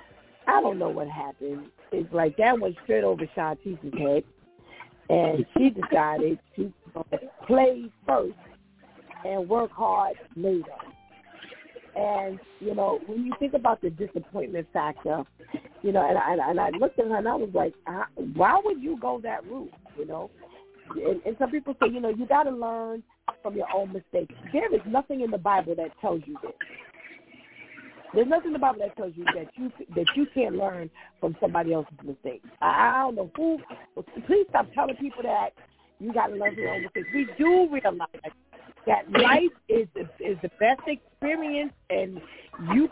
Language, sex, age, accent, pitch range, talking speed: English, female, 40-59, American, 190-285 Hz, 180 wpm